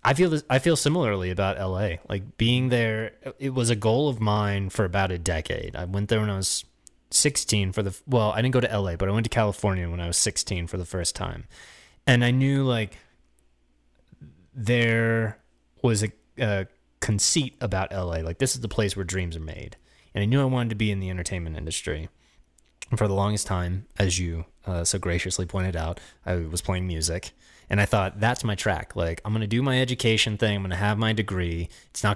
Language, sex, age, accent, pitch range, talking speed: English, male, 20-39, American, 85-110 Hz, 220 wpm